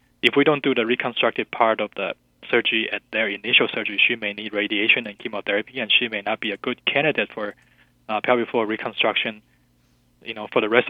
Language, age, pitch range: English, 20-39, 105-125 Hz